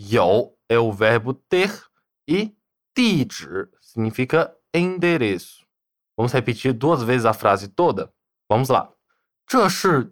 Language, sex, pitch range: Chinese, male, 125-195 Hz